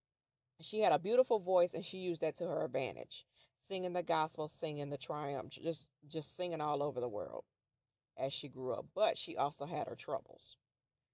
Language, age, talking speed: English, 40-59, 190 wpm